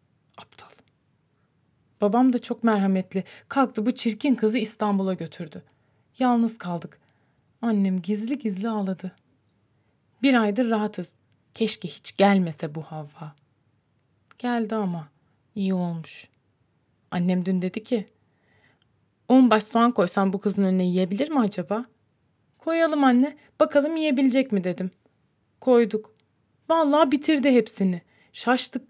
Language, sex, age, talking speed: Turkish, female, 30-49, 110 wpm